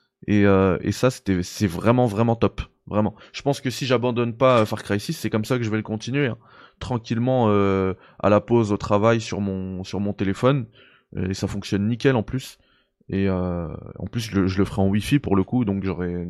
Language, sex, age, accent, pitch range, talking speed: French, male, 20-39, French, 100-125 Hz, 225 wpm